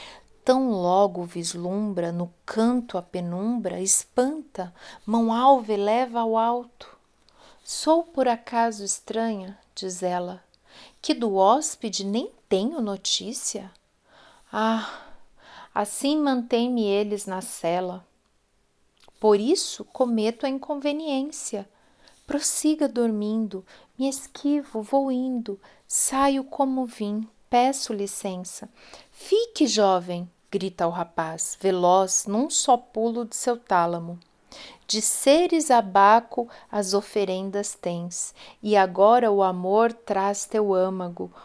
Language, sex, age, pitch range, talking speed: Portuguese, female, 40-59, 195-250 Hz, 105 wpm